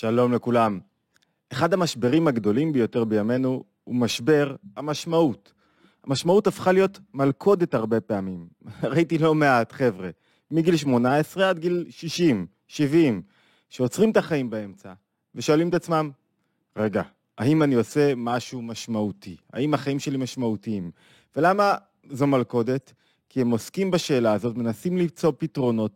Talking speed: 125 wpm